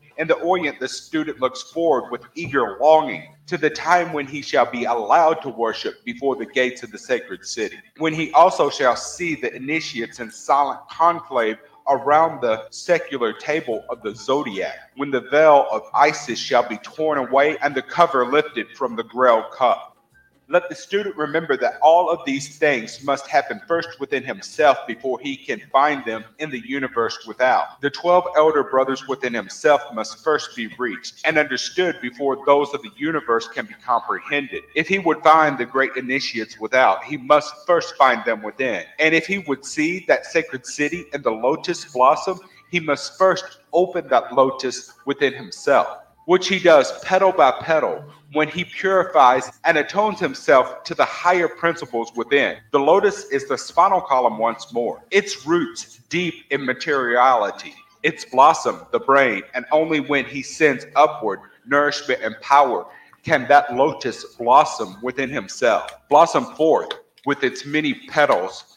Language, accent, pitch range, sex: English, American, 130-170 Hz, male